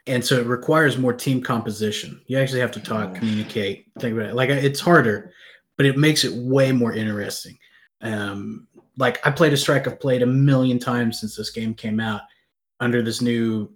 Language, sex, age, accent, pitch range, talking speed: English, male, 30-49, American, 110-125 Hz, 195 wpm